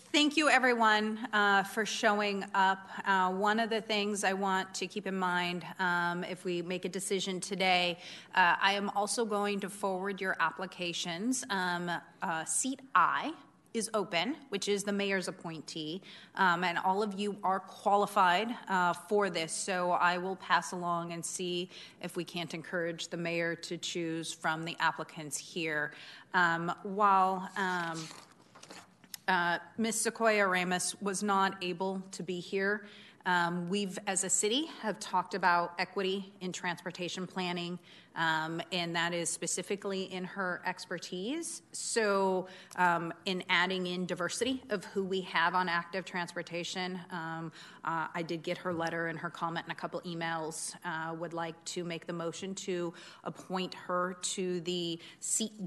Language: English